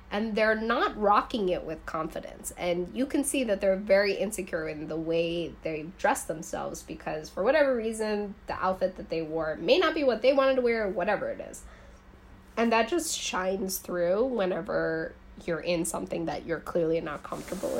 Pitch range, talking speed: 175-265 Hz, 185 wpm